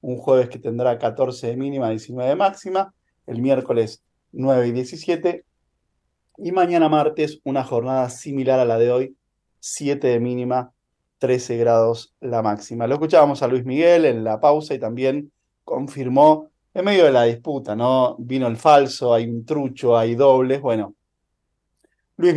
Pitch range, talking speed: 125-150 Hz, 160 wpm